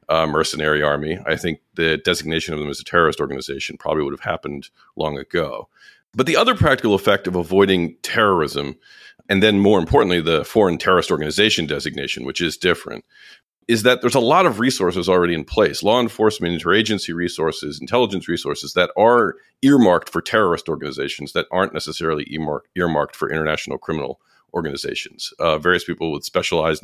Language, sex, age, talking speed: English, male, 40-59, 165 wpm